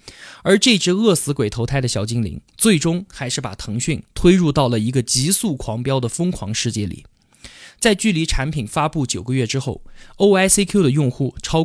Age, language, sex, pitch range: 20-39, Chinese, male, 120-190 Hz